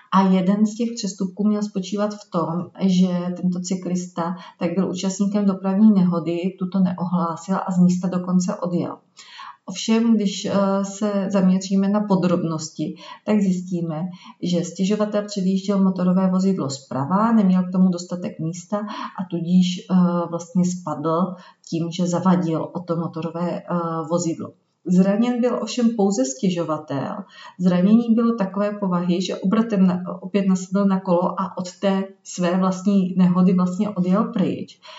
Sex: female